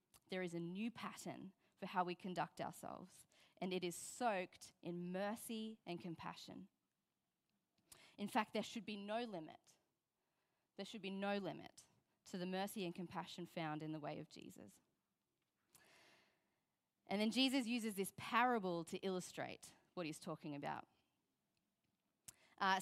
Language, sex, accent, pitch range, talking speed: English, female, Australian, 185-240 Hz, 140 wpm